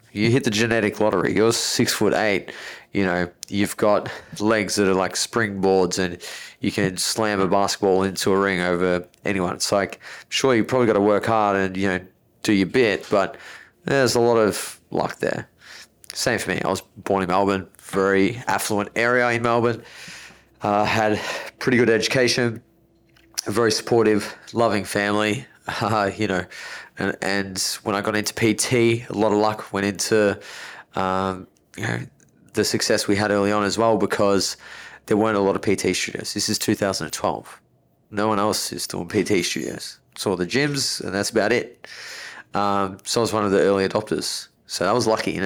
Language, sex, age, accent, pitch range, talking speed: English, male, 20-39, Australian, 95-110 Hz, 185 wpm